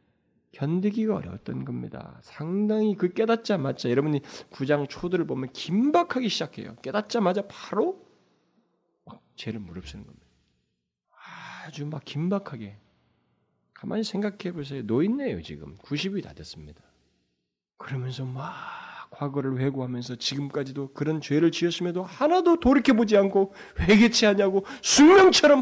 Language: Korean